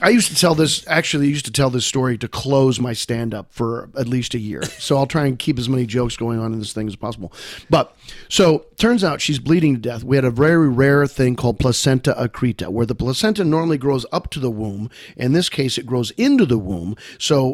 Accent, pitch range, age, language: American, 115-145 Hz, 40-59, English